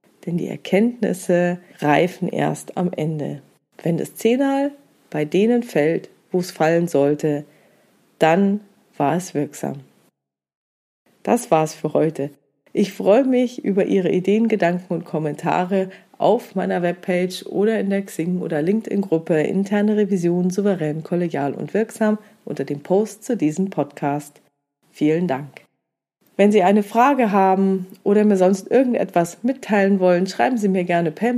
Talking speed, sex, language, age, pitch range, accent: 140 wpm, female, German, 40-59, 155-210 Hz, German